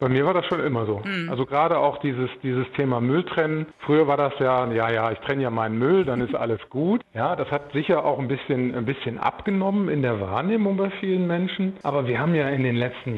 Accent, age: German, 50-69